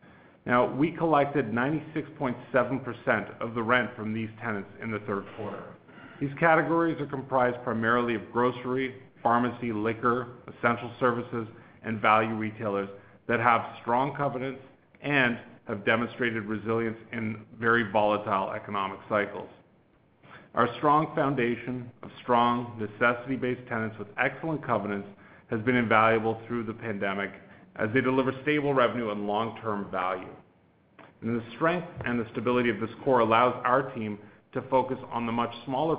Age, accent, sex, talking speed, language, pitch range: 40-59, American, male, 140 wpm, English, 110-130 Hz